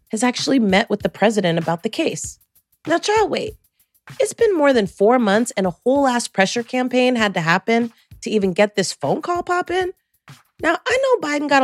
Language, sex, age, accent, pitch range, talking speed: English, female, 30-49, American, 180-255 Hz, 205 wpm